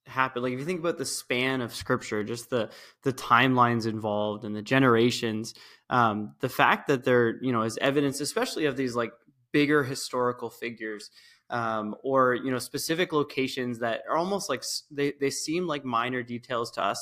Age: 20-39